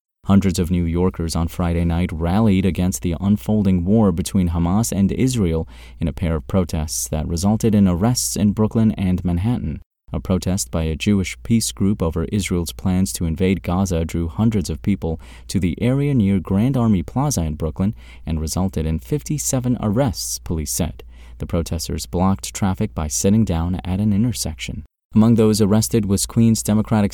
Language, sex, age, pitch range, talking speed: English, male, 30-49, 85-105 Hz, 170 wpm